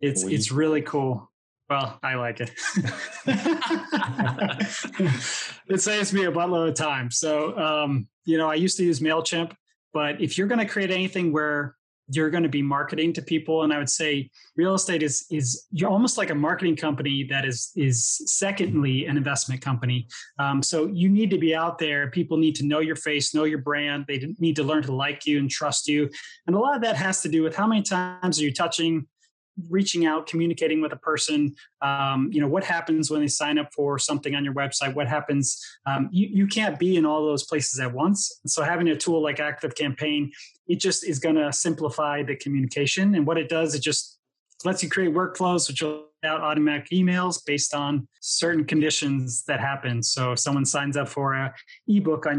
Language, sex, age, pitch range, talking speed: English, male, 20-39, 140-170 Hz, 205 wpm